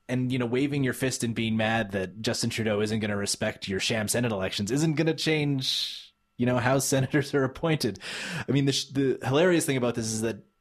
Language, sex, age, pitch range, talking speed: English, male, 20-39, 105-140 Hz, 230 wpm